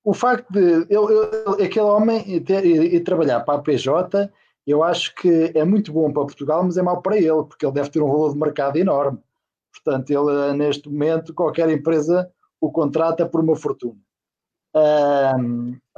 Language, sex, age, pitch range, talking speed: Portuguese, male, 20-39, 135-165 Hz, 175 wpm